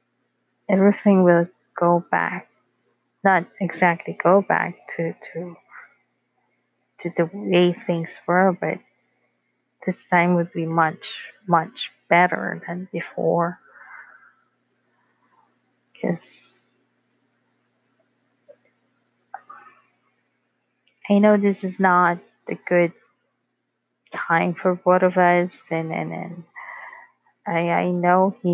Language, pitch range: English, 170-195 Hz